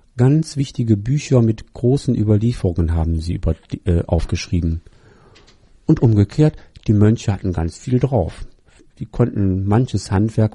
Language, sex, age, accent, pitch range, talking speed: German, male, 50-69, German, 95-125 Hz, 130 wpm